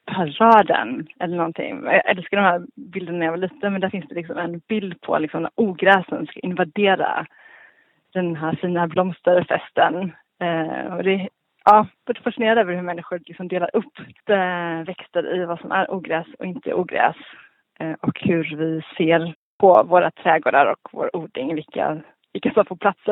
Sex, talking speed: female, 175 wpm